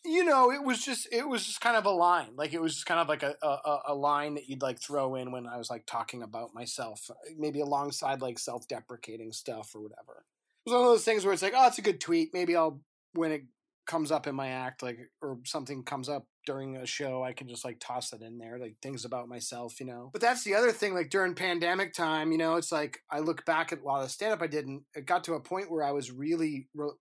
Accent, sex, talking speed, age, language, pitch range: American, male, 270 wpm, 30-49, English, 140-195 Hz